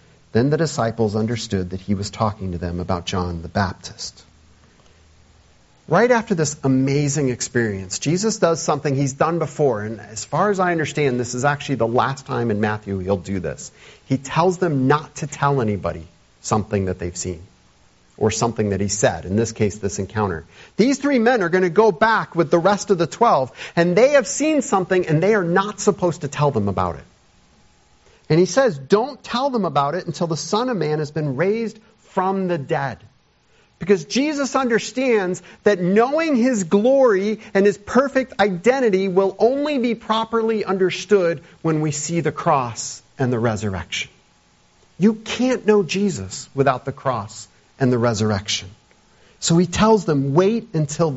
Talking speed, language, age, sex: 175 wpm, English, 40-59, male